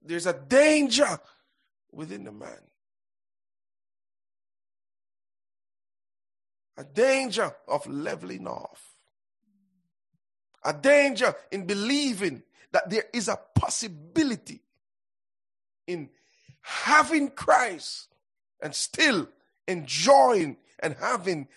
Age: 50-69